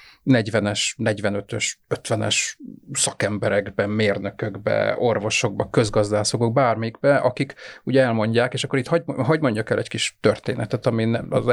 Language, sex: Hungarian, male